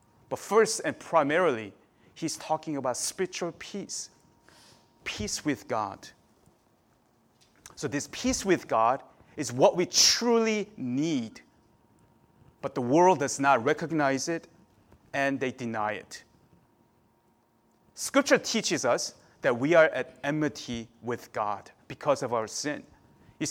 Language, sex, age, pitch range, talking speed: English, male, 40-59, 135-195 Hz, 125 wpm